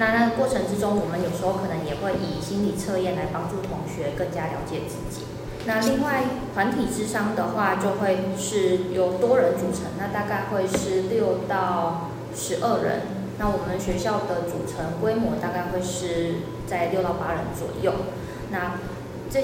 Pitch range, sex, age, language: 170-205 Hz, female, 20-39, Chinese